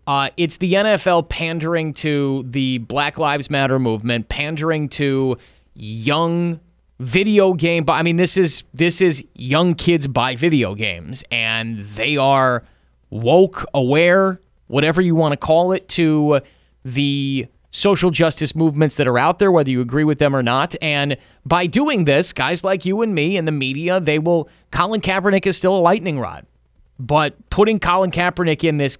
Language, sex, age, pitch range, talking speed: English, male, 30-49, 130-175 Hz, 165 wpm